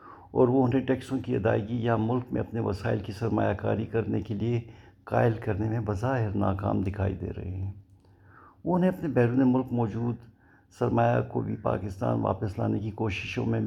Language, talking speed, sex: Urdu, 180 wpm, male